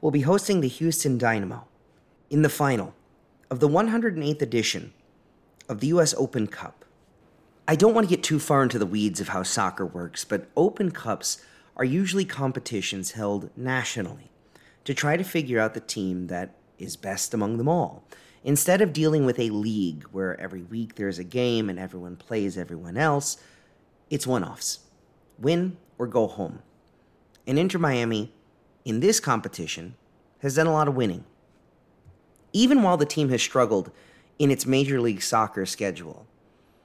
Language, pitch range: English, 105-155 Hz